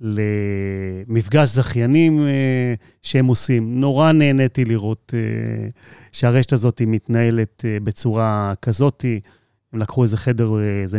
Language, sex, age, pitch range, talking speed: Hebrew, male, 30-49, 110-130 Hz, 115 wpm